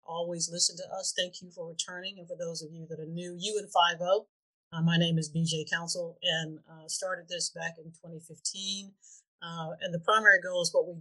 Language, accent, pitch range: English, American, 160-185 Hz